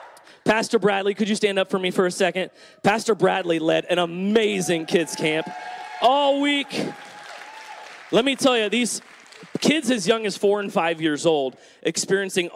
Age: 30-49